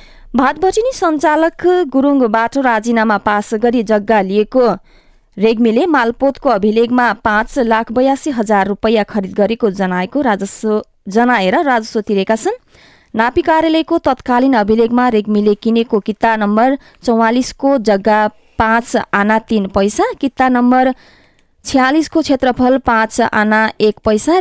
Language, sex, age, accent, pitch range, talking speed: English, female, 20-39, Indian, 210-270 Hz, 130 wpm